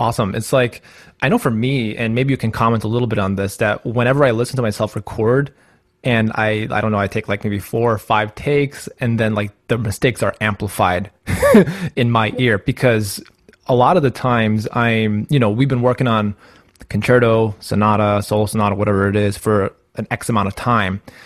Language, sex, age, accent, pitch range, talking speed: English, male, 20-39, American, 105-120 Hz, 205 wpm